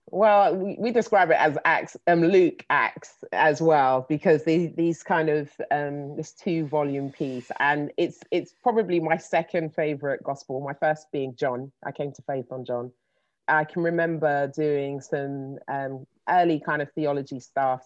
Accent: British